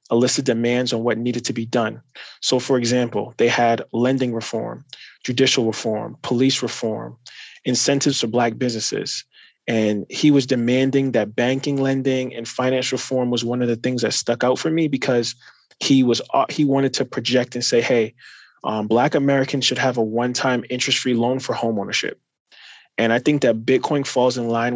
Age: 20-39